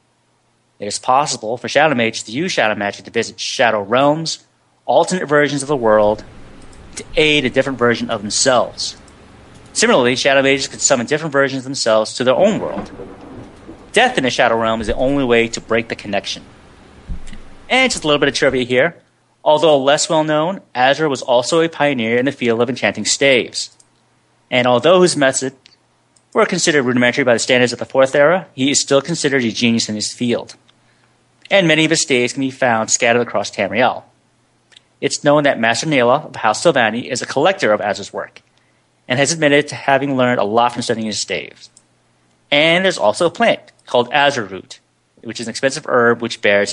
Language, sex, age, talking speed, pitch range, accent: English, male, 30-49, 190 wpm, 120-150 Hz, American